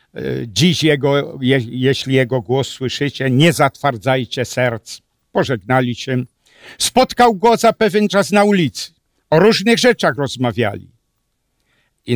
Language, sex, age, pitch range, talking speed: Polish, male, 60-79, 125-195 Hz, 115 wpm